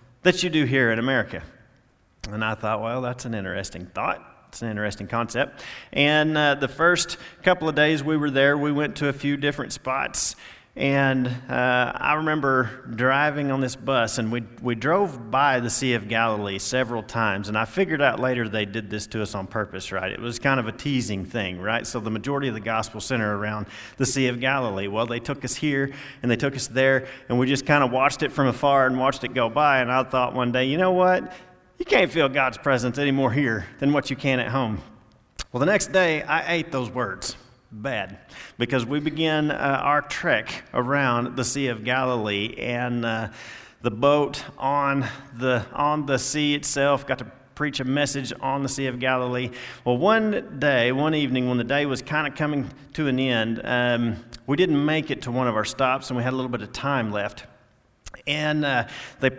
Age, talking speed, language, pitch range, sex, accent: 40-59, 210 wpm, English, 120-145 Hz, male, American